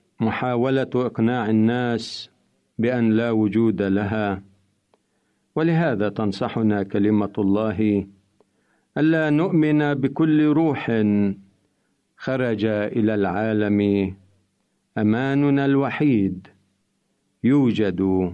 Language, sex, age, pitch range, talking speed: Arabic, male, 50-69, 105-140 Hz, 70 wpm